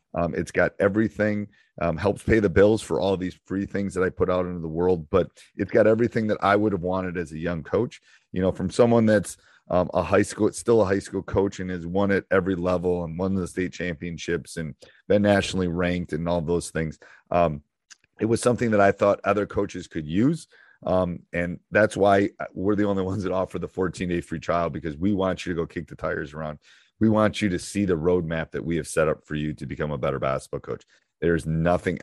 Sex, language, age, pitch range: male, English, 40-59, 80-100 Hz